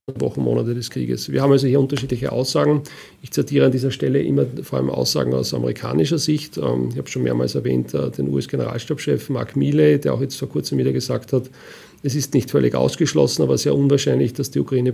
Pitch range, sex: 120-145 Hz, male